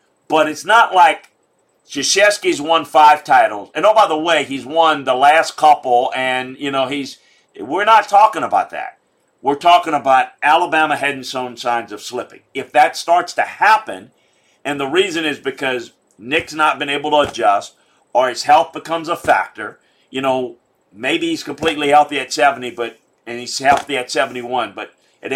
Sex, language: male, English